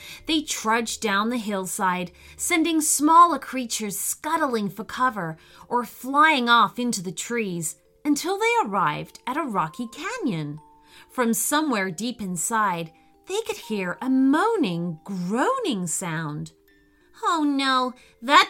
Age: 30-49